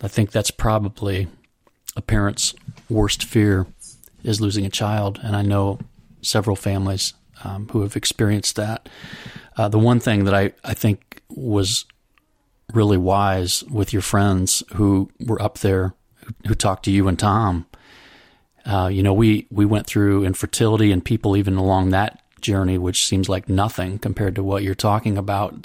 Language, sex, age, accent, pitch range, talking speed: English, male, 40-59, American, 95-110 Hz, 165 wpm